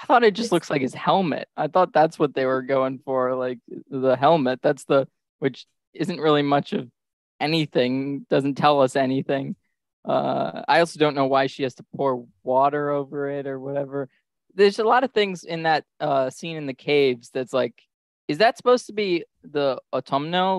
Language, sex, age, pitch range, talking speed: English, male, 20-39, 125-165 Hz, 195 wpm